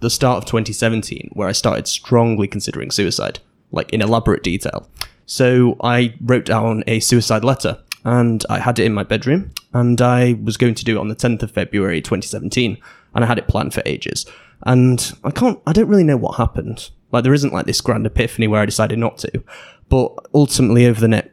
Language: English